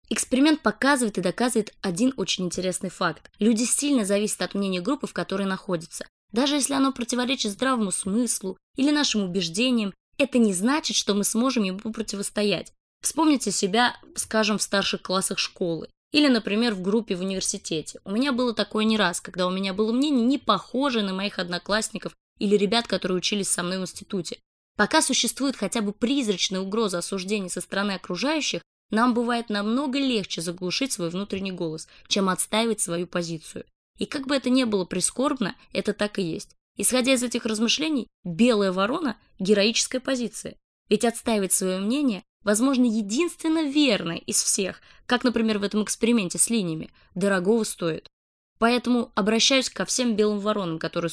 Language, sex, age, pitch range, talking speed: Russian, female, 20-39, 190-245 Hz, 160 wpm